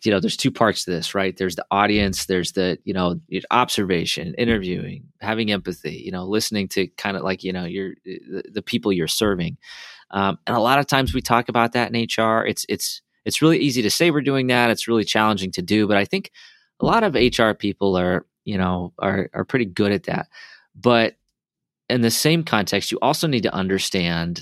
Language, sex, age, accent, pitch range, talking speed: English, male, 30-49, American, 95-115 Hz, 215 wpm